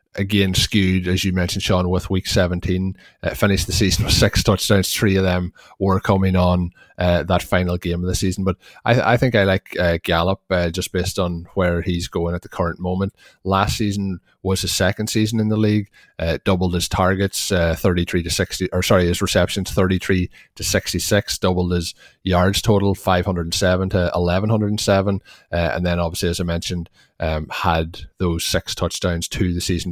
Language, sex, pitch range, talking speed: English, male, 85-100 Hz, 190 wpm